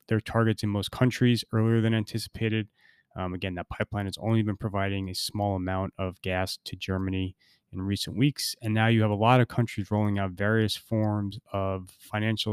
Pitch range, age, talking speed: 95-110 Hz, 20-39, 190 wpm